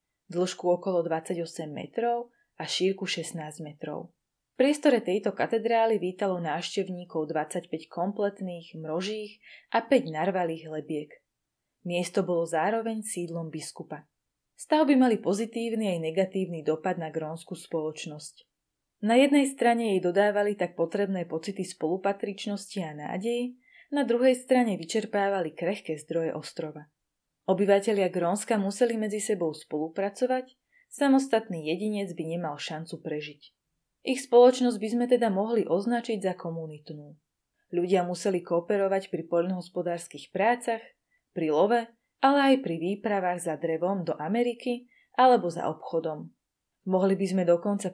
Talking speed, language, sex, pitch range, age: 120 wpm, Slovak, female, 165-230 Hz, 20-39